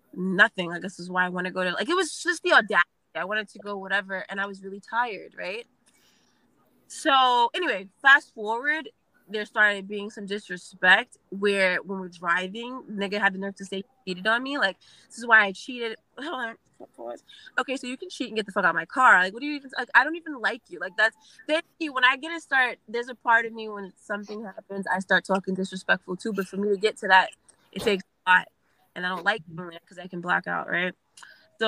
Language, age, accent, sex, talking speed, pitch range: English, 20-39, American, female, 235 wpm, 185-225 Hz